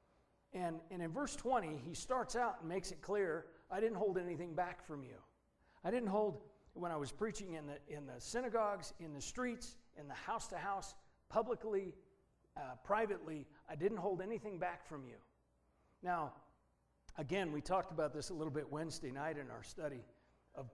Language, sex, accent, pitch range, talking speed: English, male, American, 150-210 Hz, 180 wpm